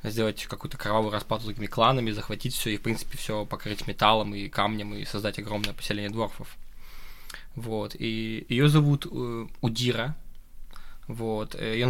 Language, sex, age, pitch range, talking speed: Russian, male, 20-39, 110-125 Hz, 145 wpm